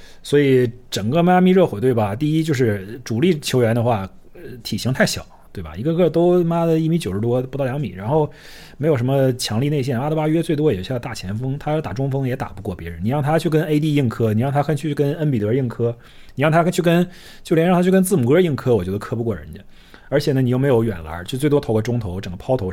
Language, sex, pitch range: Chinese, male, 105-145 Hz